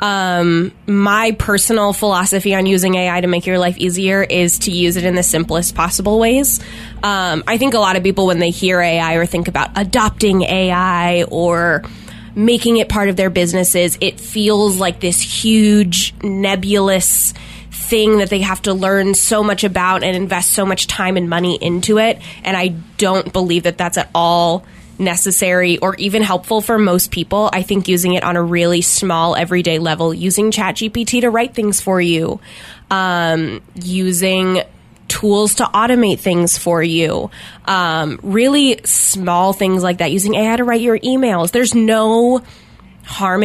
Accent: American